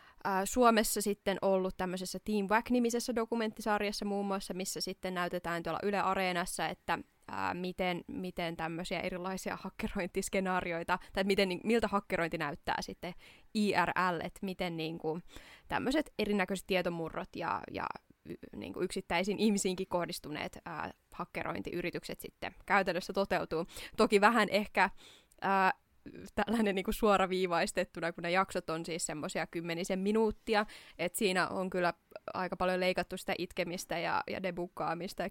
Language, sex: Finnish, female